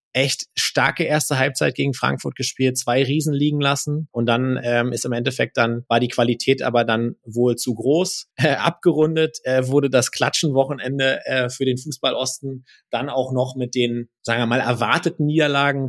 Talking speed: 180 wpm